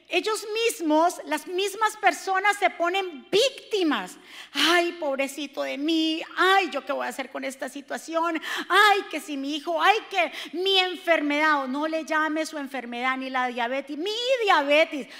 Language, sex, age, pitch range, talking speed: Spanish, female, 40-59, 230-335 Hz, 160 wpm